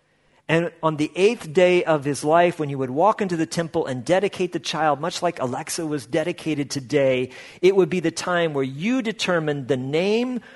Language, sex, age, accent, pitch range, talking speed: English, male, 40-59, American, 140-180 Hz, 200 wpm